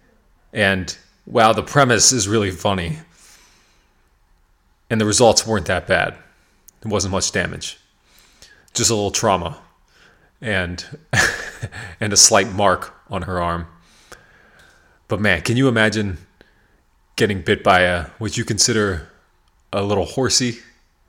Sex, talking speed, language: male, 125 wpm, English